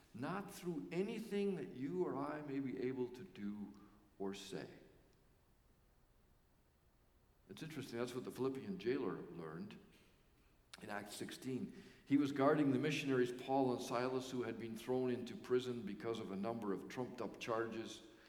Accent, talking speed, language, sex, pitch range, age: American, 150 wpm, English, male, 125-155 Hz, 50-69